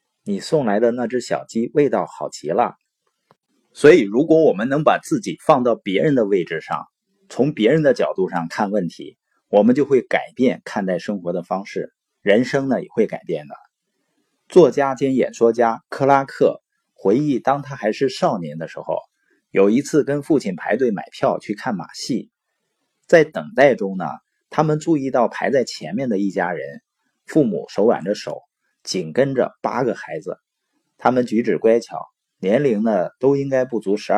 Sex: male